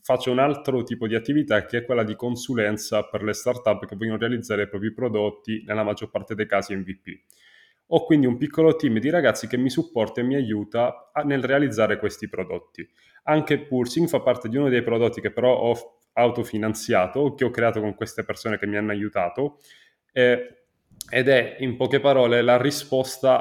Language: Italian